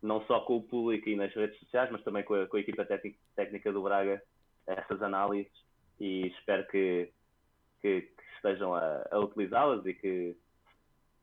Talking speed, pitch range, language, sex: 165 wpm, 95-110 Hz, Portuguese, male